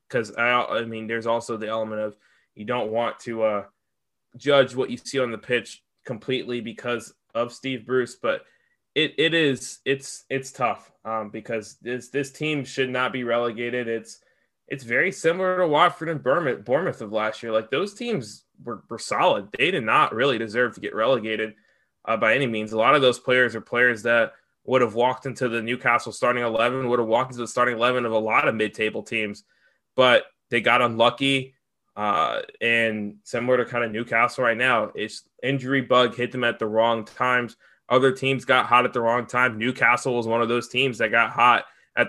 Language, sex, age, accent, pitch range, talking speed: English, male, 20-39, American, 115-130 Hz, 200 wpm